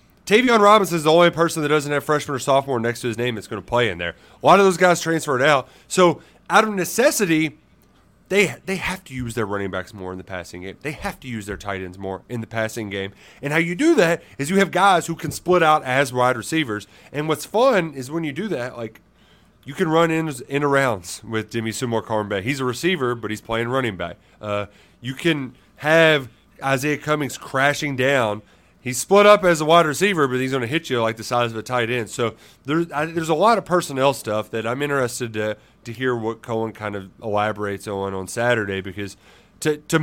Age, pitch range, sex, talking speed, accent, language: 30-49, 110-155 Hz, male, 230 wpm, American, English